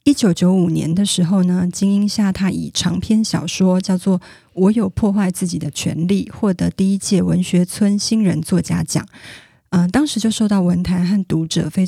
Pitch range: 175-205 Hz